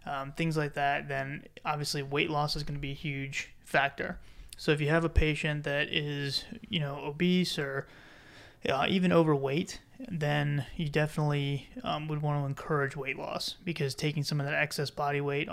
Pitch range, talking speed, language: 140-155 Hz, 185 wpm, English